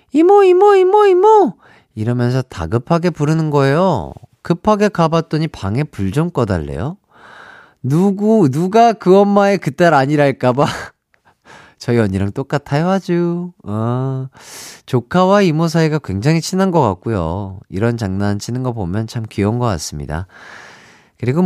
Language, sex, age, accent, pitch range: Korean, male, 40-59, native, 110-155 Hz